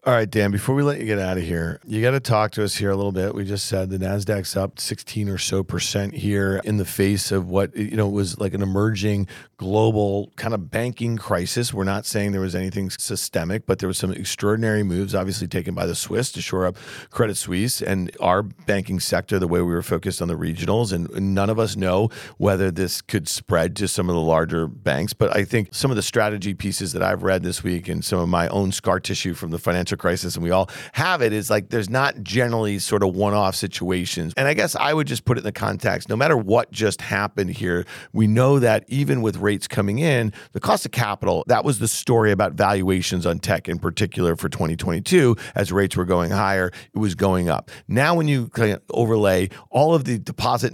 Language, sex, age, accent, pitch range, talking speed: English, male, 40-59, American, 95-115 Hz, 230 wpm